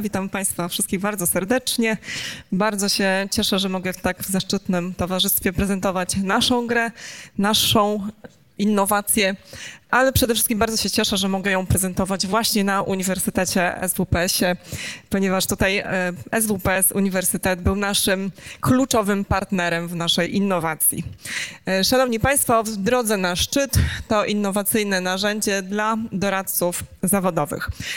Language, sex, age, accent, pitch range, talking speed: Polish, female, 20-39, native, 185-220 Hz, 120 wpm